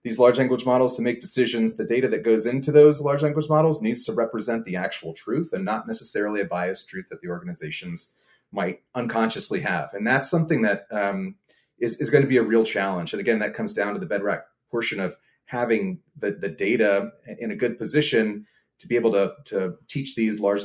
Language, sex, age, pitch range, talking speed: English, male, 30-49, 100-145 Hz, 210 wpm